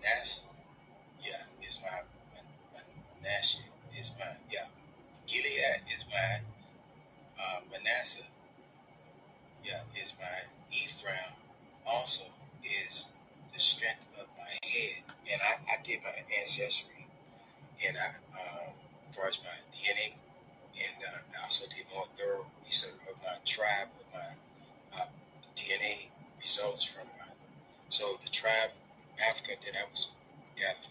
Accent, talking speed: American, 120 wpm